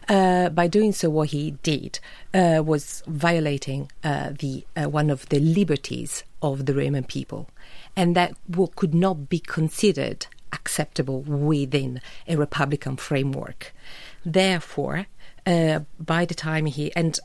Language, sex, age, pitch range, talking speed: English, female, 40-59, 145-175 Hz, 140 wpm